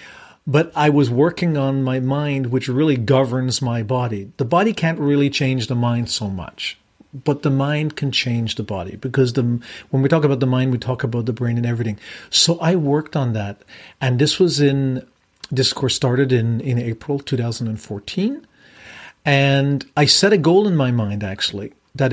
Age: 40-59